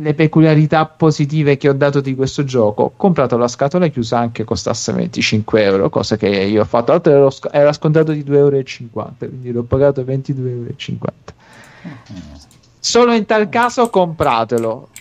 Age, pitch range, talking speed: 30-49, 120-150 Hz, 150 wpm